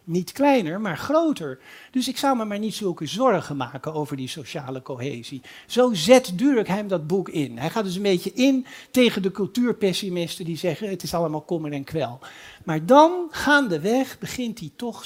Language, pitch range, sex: Dutch, 150-215 Hz, male